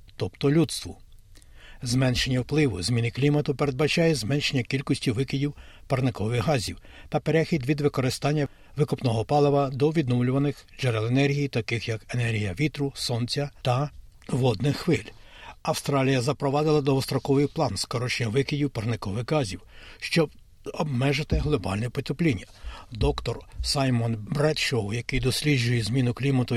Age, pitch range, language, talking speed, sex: 60-79, 115-145 Hz, Ukrainian, 110 wpm, male